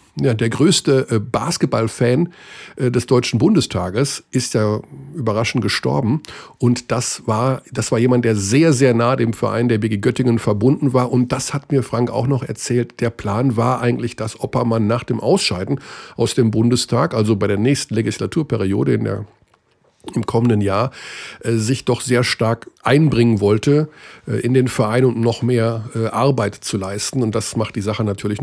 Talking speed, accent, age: 165 wpm, German, 50-69